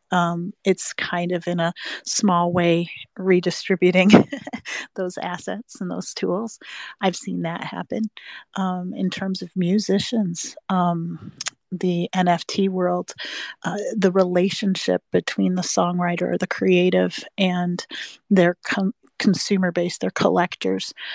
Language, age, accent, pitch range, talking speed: English, 40-59, American, 170-190 Hz, 120 wpm